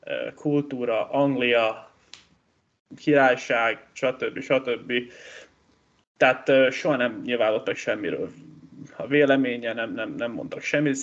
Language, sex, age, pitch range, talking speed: Hungarian, male, 20-39, 125-160 Hz, 90 wpm